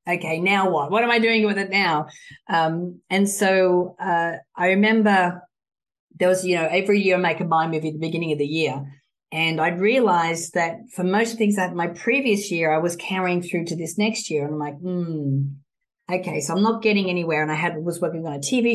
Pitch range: 155-195 Hz